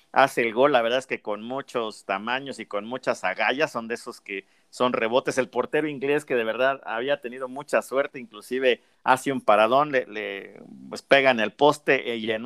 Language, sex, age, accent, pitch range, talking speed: Spanish, male, 50-69, Mexican, 105-140 Hz, 205 wpm